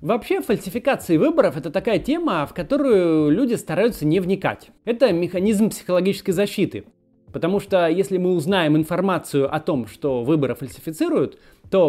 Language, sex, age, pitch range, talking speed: Russian, male, 30-49, 160-240 Hz, 140 wpm